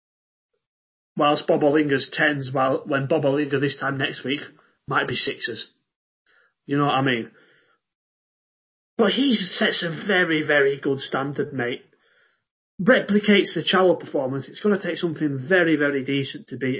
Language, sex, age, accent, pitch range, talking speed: English, male, 30-49, British, 145-185 Hz, 150 wpm